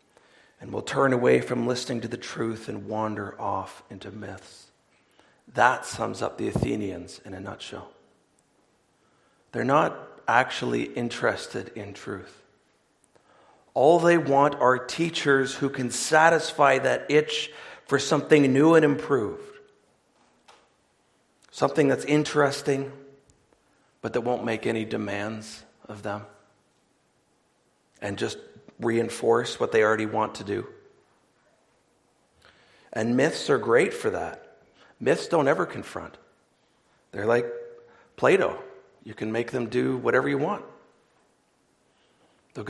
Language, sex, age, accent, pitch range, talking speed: English, male, 40-59, American, 115-150 Hz, 120 wpm